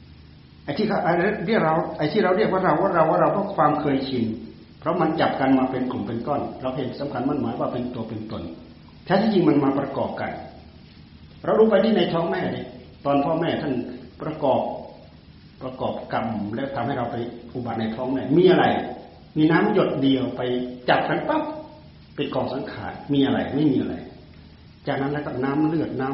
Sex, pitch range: male, 125-175 Hz